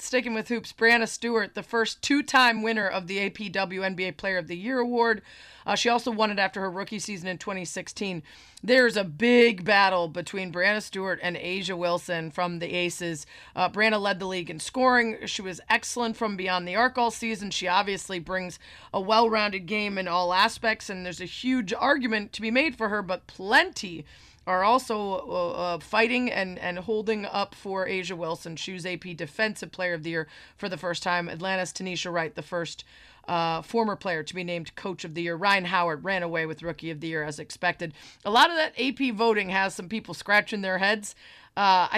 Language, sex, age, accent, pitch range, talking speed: English, female, 30-49, American, 175-220 Hz, 200 wpm